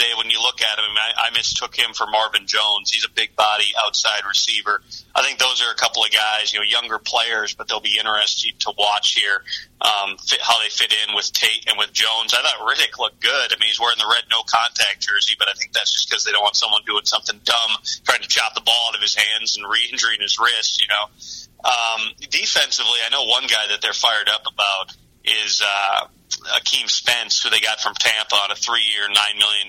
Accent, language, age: American, English, 30-49